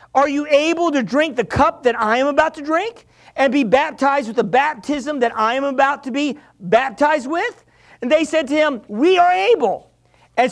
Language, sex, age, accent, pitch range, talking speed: English, male, 50-69, American, 225-305 Hz, 205 wpm